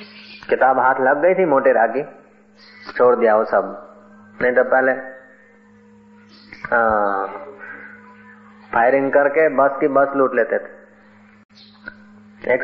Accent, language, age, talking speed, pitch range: native, Hindi, 30-49, 115 wpm, 130-160 Hz